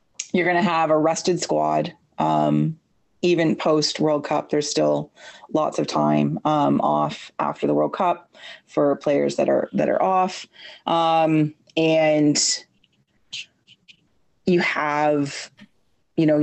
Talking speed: 130 wpm